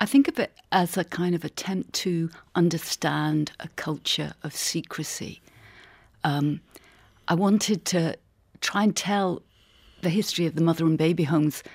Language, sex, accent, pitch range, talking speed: English, female, British, 140-170 Hz, 155 wpm